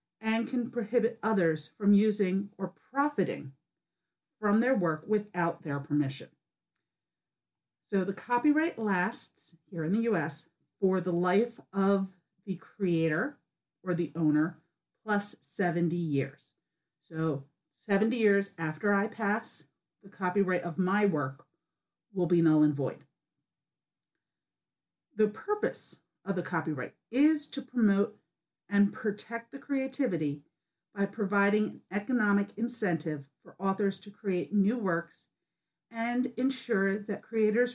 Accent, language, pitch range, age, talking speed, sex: American, English, 170-220 Hz, 40-59, 120 wpm, female